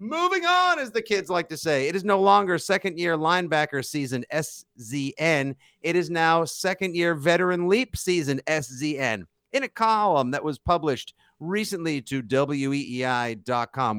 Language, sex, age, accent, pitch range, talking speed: English, male, 50-69, American, 120-170 Hz, 140 wpm